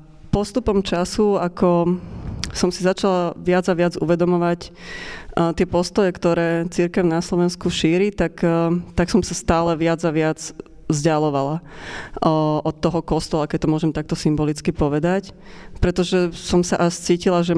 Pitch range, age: 160-180 Hz, 20-39